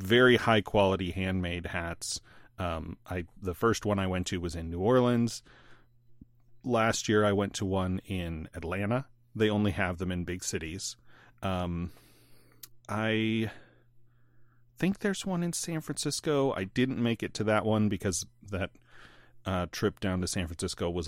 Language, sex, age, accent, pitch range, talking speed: English, male, 30-49, American, 95-120 Hz, 160 wpm